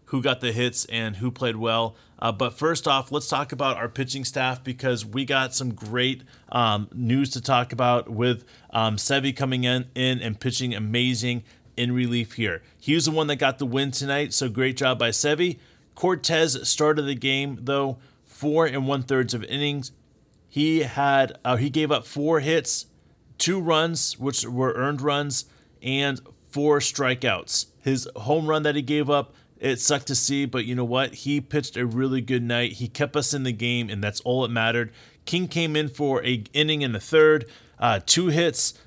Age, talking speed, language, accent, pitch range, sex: 30-49, 195 wpm, English, American, 120-145 Hz, male